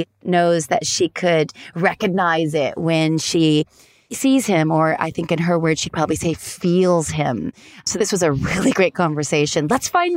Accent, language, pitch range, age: American, English, 160-210 Hz, 30-49